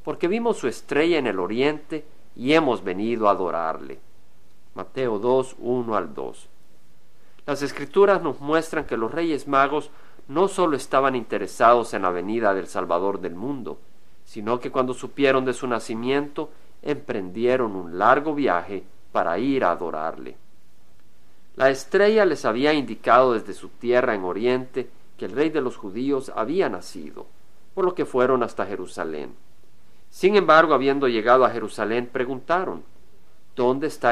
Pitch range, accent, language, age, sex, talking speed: 115-160 Hz, Mexican, Spanish, 50-69, male, 150 wpm